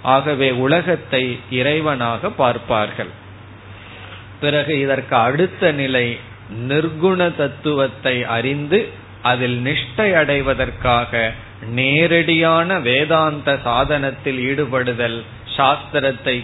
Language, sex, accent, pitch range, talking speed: Tamil, male, native, 120-150 Hz, 60 wpm